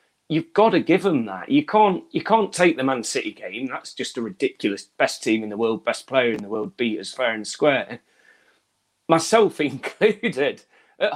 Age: 30-49